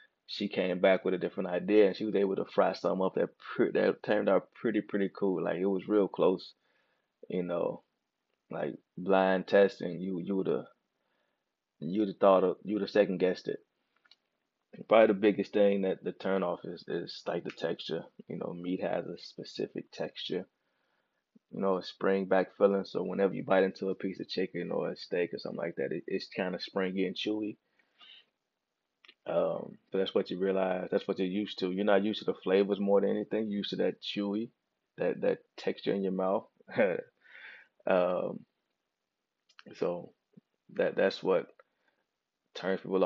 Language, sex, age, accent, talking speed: English, male, 20-39, American, 180 wpm